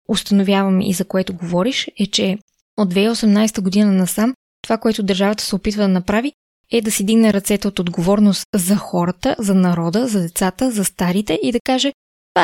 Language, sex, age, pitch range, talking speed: Bulgarian, female, 20-39, 190-225 Hz, 180 wpm